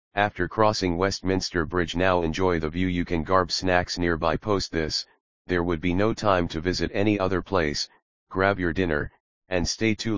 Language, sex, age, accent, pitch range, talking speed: English, male, 40-59, American, 80-100 Hz, 185 wpm